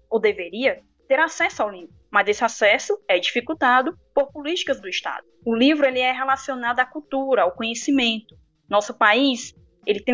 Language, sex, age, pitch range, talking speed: Portuguese, female, 10-29, 215-275 Hz, 165 wpm